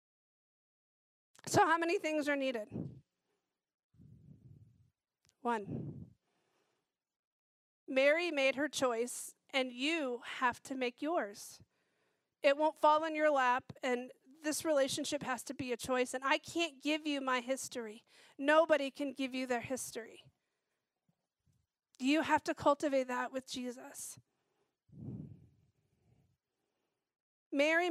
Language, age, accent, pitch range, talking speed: English, 40-59, American, 250-305 Hz, 110 wpm